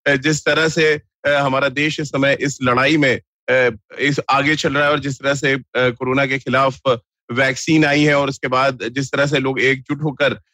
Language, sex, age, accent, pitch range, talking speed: Hindi, male, 30-49, native, 140-155 Hz, 195 wpm